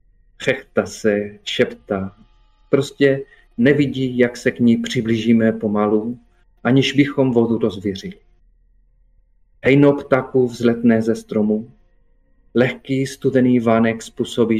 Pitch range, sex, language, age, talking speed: 110-145 Hz, male, Czech, 40-59, 100 wpm